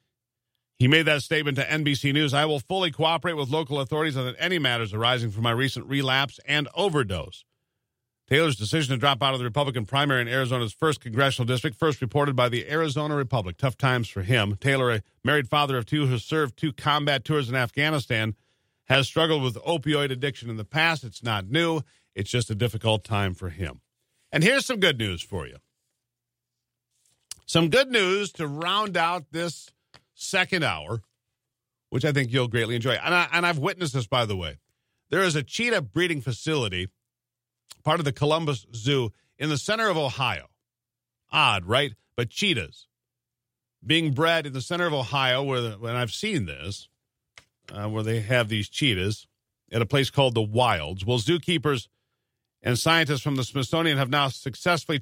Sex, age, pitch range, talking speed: male, 50-69, 120-150 Hz, 180 wpm